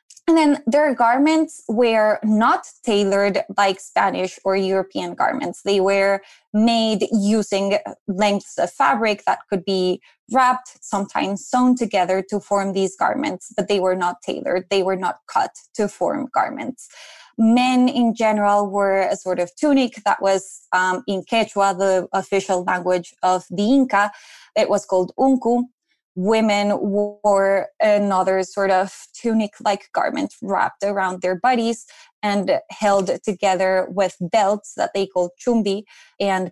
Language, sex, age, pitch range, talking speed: English, female, 20-39, 190-230 Hz, 140 wpm